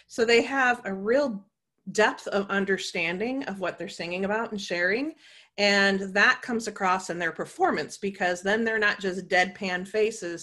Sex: female